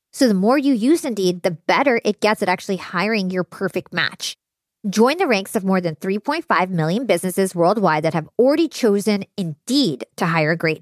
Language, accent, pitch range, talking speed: English, American, 180-240 Hz, 190 wpm